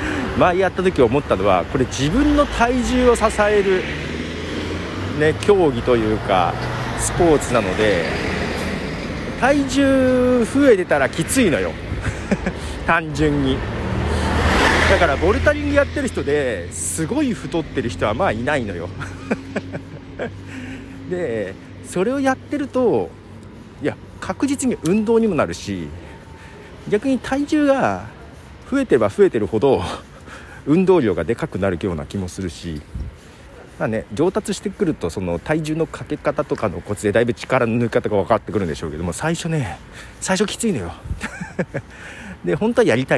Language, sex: Japanese, male